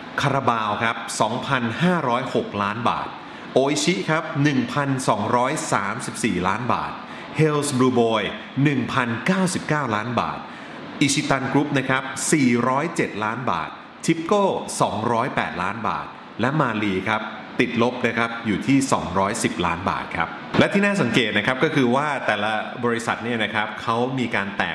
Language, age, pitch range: Thai, 30-49, 110-140 Hz